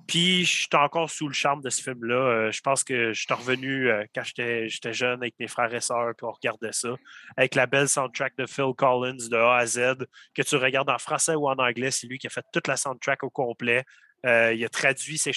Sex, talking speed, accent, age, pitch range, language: male, 255 wpm, Canadian, 30-49, 120-145 Hz, French